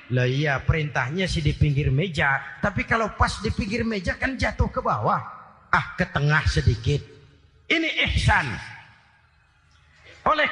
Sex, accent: male, native